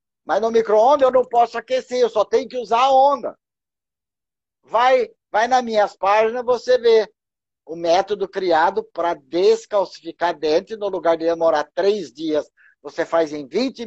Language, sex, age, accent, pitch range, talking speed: Portuguese, male, 60-79, Brazilian, 205-265 Hz, 165 wpm